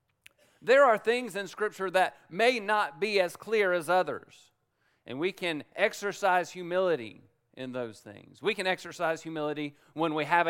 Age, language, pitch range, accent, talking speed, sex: 40-59, English, 130-180 Hz, American, 160 wpm, male